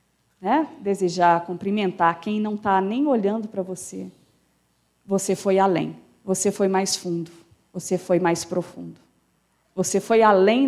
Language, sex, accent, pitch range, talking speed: Portuguese, female, Brazilian, 195-255 Hz, 135 wpm